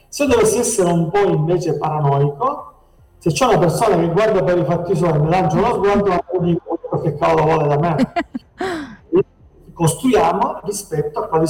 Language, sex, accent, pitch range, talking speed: Italian, male, native, 145-180 Hz, 165 wpm